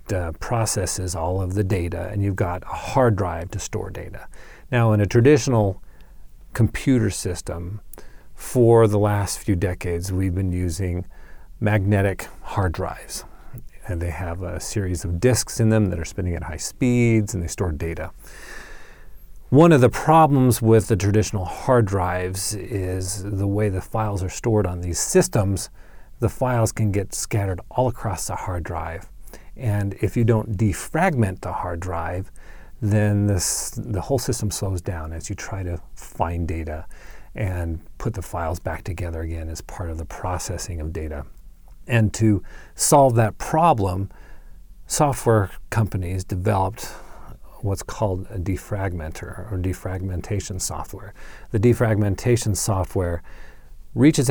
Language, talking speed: English, 145 wpm